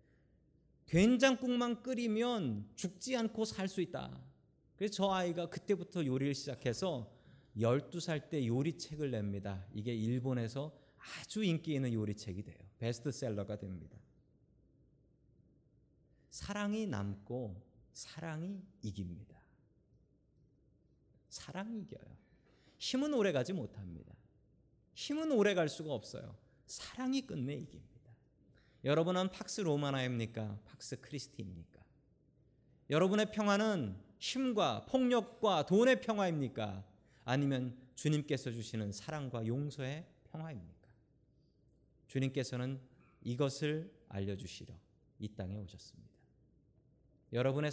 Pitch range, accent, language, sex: 110-165 Hz, native, Korean, male